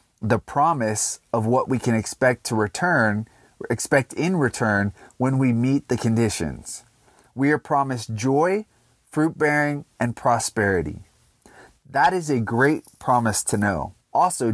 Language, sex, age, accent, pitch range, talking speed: English, male, 30-49, American, 115-145 Hz, 135 wpm